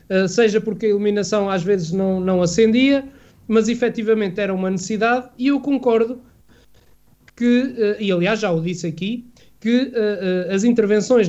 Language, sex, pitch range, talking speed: Portuguese, male, 195-270 Hz, 165 wpm